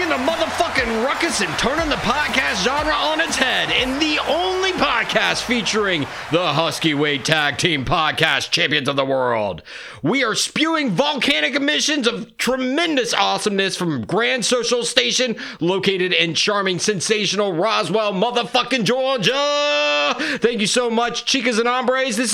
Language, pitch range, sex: English, 155-255 Hz, male